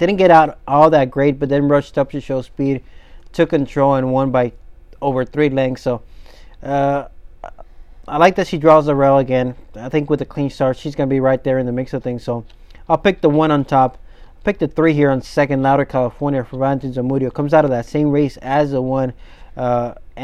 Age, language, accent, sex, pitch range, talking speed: 30-49, English, American, male, 130-155 Hz, 225 wpm